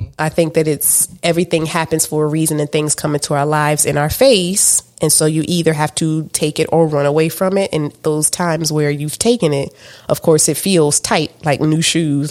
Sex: female